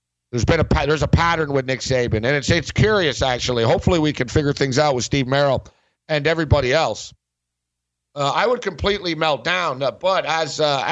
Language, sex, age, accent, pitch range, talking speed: English, male, 60-79, American, 110-155 Hz, 190 wpm